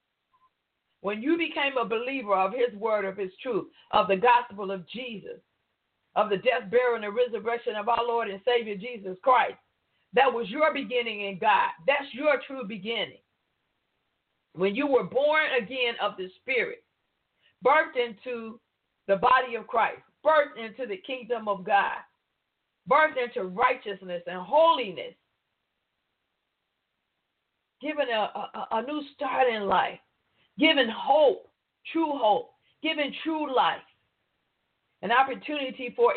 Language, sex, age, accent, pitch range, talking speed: English, female, 50-69, American, 210-270 Hz, 135 wpm